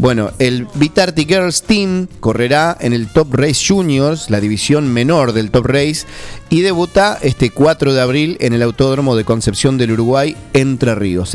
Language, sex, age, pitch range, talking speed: English, male, 30-49, 115-155 Hz, 170 wpm